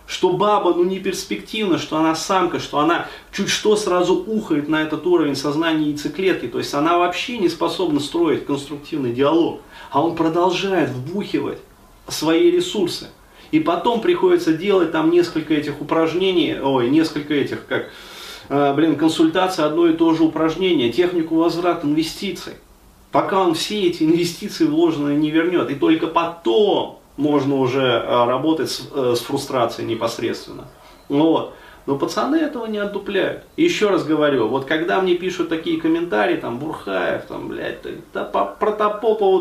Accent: native